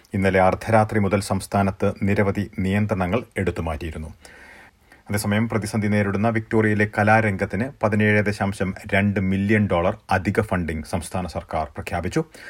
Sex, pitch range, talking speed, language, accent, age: male, 95-110 Hz, 100 wpm, Malayalam, native, 30-49